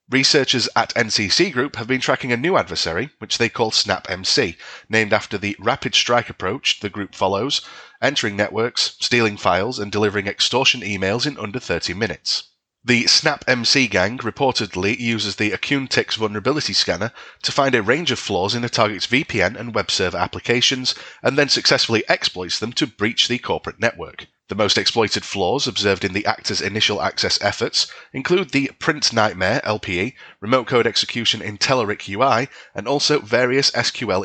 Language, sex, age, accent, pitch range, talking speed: English, male, 30-49, British, 100-130 Hz, 165 wpm